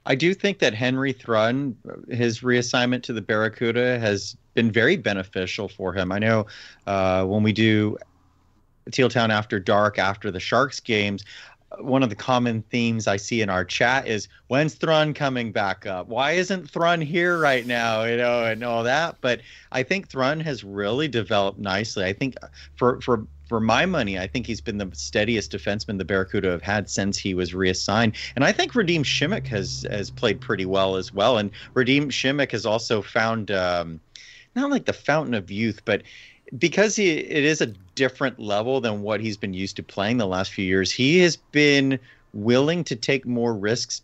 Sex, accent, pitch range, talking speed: male, American, 100-130 Hz, 190 wpm